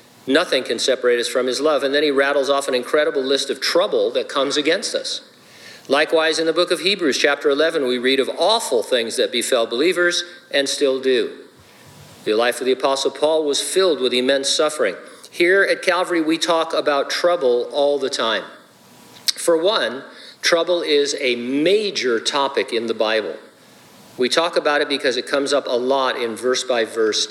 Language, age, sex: English, 50-69, male